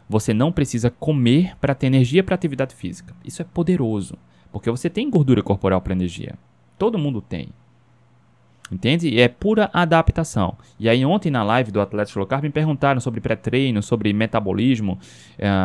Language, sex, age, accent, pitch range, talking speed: Portuguese, male, 20-39, Brazilian, 105-145 Hz, 165 wpm